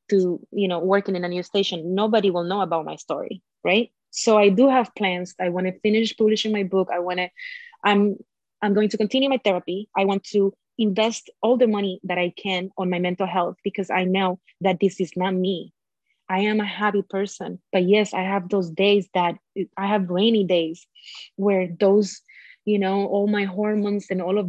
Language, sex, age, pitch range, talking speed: English, female, 20-39, 190-215 Hz, 210 wpm